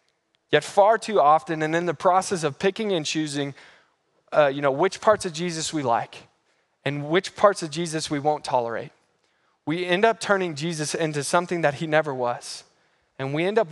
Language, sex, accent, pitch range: English, male, American, 150-190 Hz